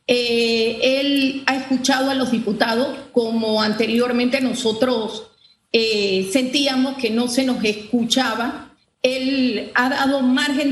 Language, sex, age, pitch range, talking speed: Spanish, female, 40-59, 230-270 Hz, 120 wpm